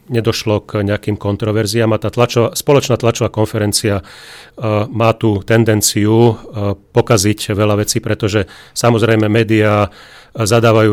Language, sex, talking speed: Slovak, male, 125 wpm